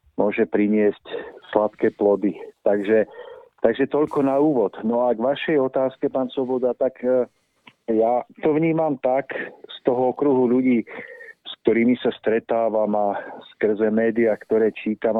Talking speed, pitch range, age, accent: 140 wpm, 110-140 Hz, 50-69, native